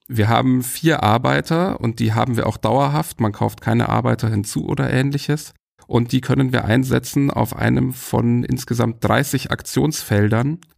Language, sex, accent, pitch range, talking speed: German, male, German, 105-130 Hz, 155 wpm